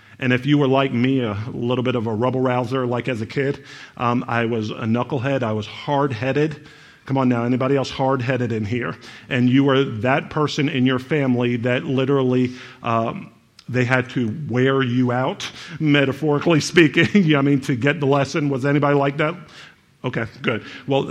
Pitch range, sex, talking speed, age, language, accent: 120-145 Hz, male, 185 wpm, 50-69, English, American